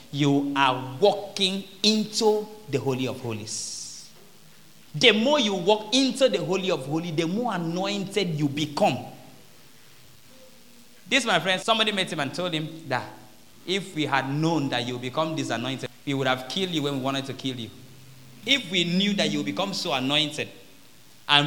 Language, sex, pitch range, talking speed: English, male, 135-195 Hz, 175 wpm